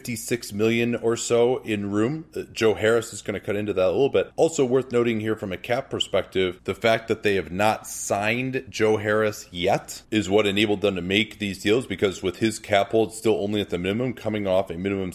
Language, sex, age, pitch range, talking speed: English, male, 30-49, 95-110 Hz, 225 wpm